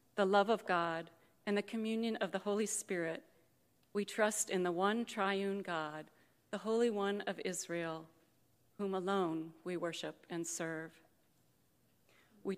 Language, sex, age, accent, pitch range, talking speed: English, female, 40-59, American, 175-210 Hz, 145 wpm